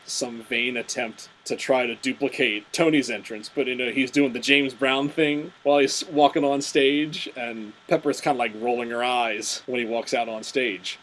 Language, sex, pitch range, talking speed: English, male, 120-150 Hz, 205 wpm